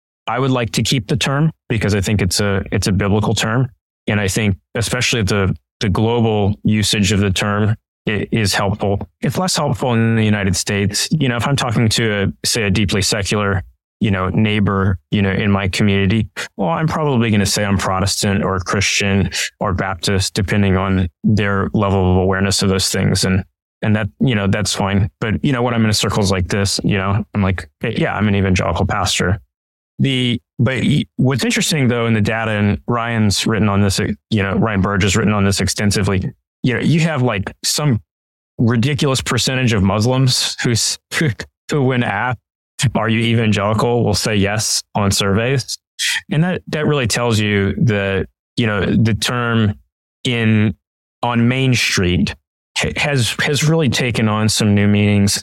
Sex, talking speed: male, 185 wpm